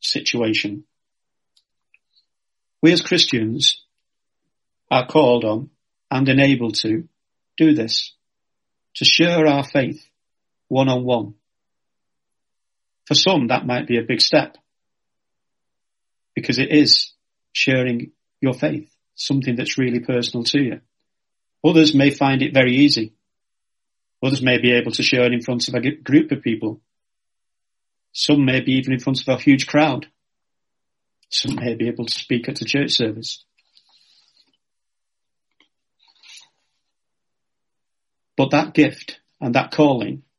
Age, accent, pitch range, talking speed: 40-59, British, 120-145 Hz, 125 wpm